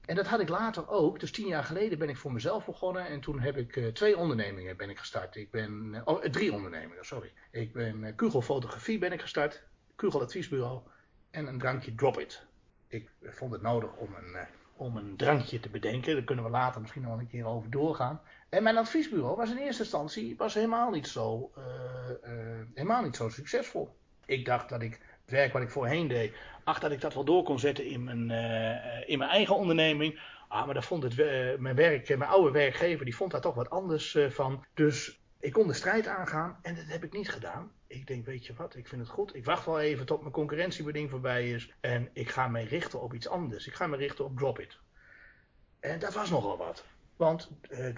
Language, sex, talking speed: Dutch, male, 220 wpm